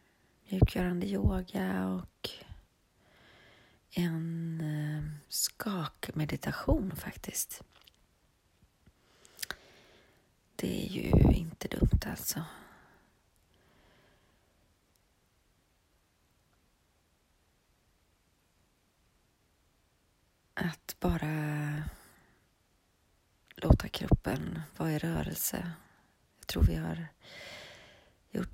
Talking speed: 50 wpm